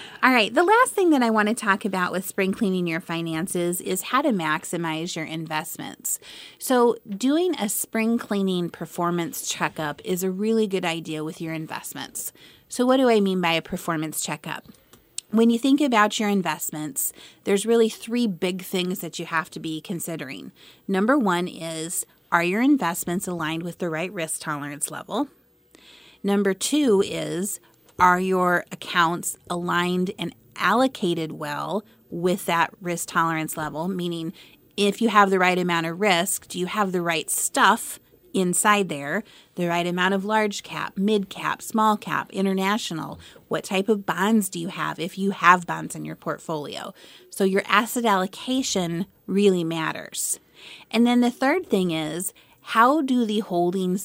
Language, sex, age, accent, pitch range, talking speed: English, female, 30-49, American, 165-215 Hz, 165 wpm